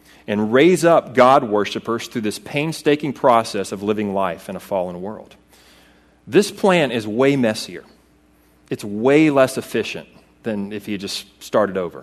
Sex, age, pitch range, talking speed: male, 40-59, 75-125 Hz, 150 wpm